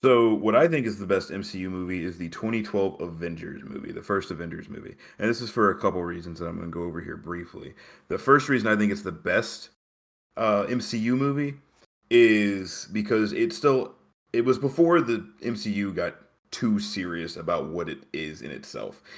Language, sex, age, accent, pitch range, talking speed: English, male, 30-49, American, 90-115 Hz, 195 wpm